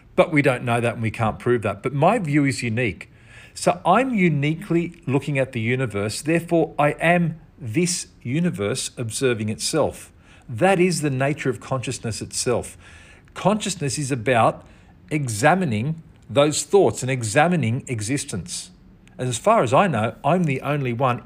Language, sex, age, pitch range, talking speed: English, male, 50-69, 115-165 Hz, 155 wpm